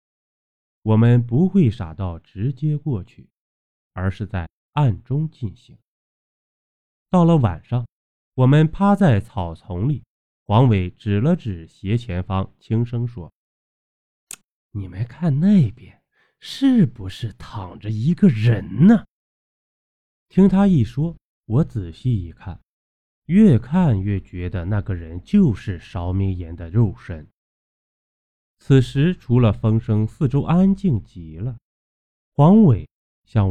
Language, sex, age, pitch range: Chinese, male, 20-39, 90-140 Hz